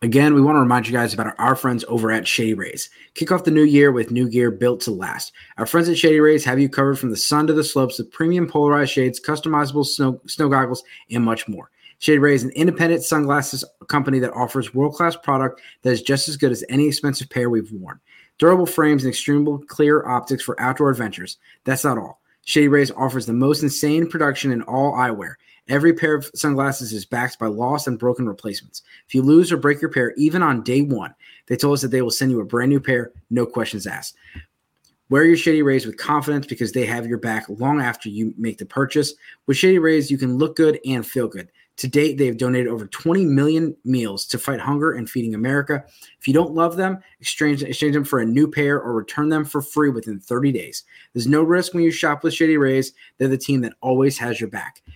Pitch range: 125-150 Hz